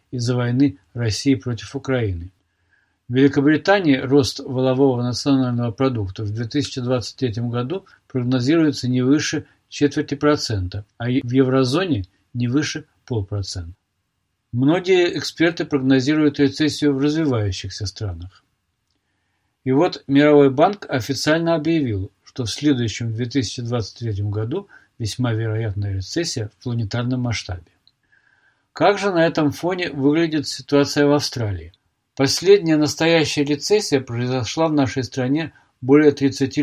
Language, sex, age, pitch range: Russian, male, 50-69, 115-150 Hz